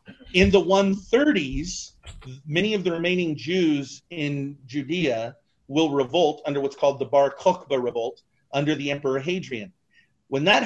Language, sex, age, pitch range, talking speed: English, male, 40-59, 140-190 Hz, 140 wpm